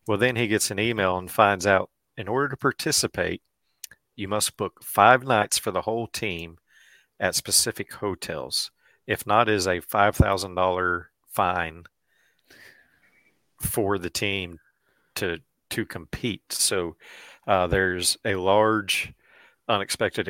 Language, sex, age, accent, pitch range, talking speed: English, male, 40-59, American, 95-110 Hz, 130 wpm